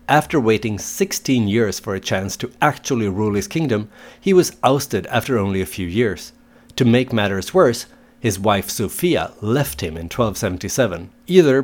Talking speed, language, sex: 165 wpm, English, male